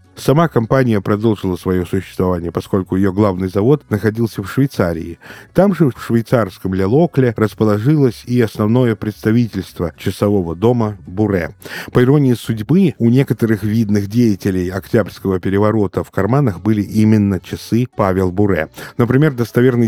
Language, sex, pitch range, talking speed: Russian, male, 100-125 Hz, 125 wpm